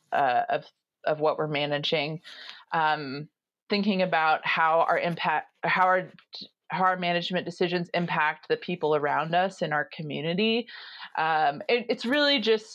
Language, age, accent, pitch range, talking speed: English, 30-49, American, 165-210 Hz, 145 wpm